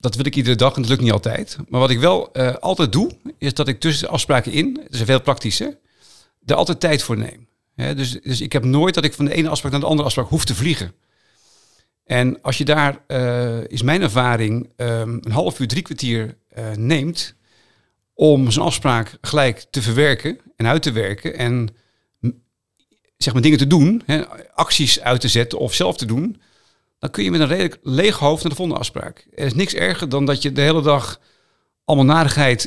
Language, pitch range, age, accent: Dutch, 115-150 Hz, 50-69, Belgian